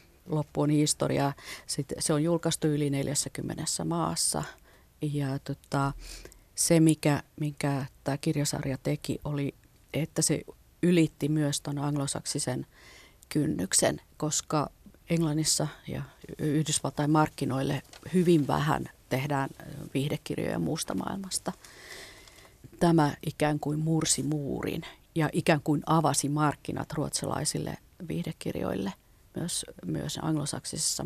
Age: 40-59